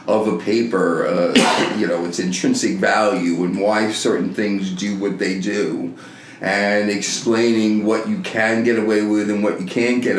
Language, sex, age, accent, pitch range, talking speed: English, male, 40-59, American, 100-125 Hz, 175 wpm